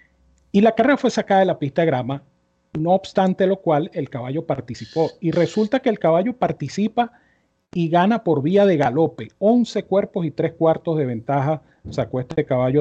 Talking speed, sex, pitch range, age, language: 185 wpm, male, 135-195 Hz, 40-59, Spanish